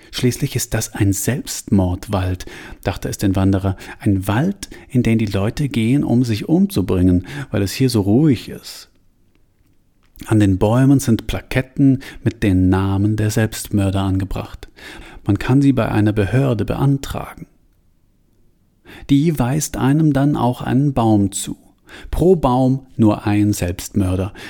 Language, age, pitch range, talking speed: German, 40-59, 95-125 Hz, 135 wpm